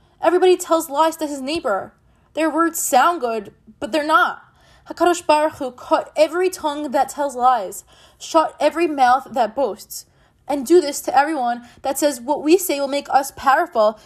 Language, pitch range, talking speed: English, 240-305 Hz, 175 wpm